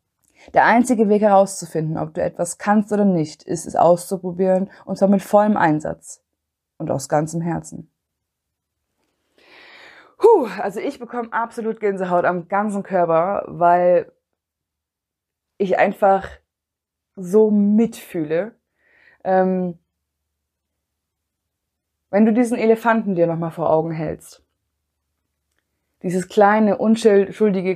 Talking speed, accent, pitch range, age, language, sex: 105 wpm, German, 160-205 Hz, 20-39, German, female